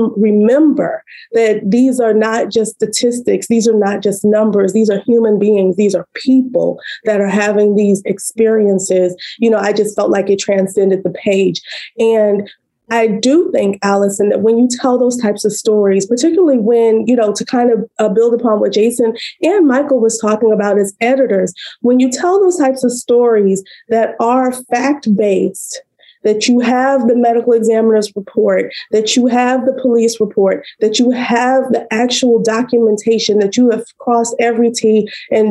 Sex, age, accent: female, 20-39, American